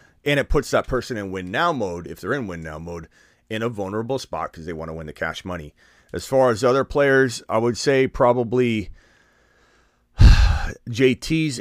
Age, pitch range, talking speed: 30-49, 85-115 Hz, 180 wpm